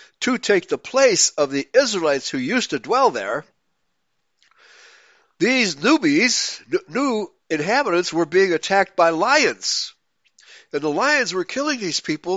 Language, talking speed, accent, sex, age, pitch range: English, 140 wpm, American, male, 60-79, 155-255 Hz